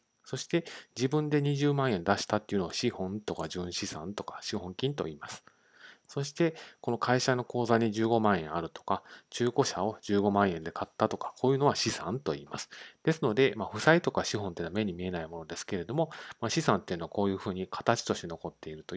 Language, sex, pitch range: Japanese, male, 95-135 Hz